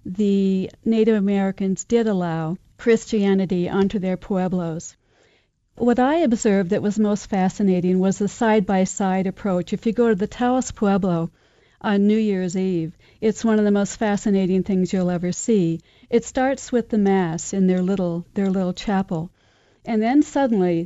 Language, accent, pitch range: English, American, 185-215 Hz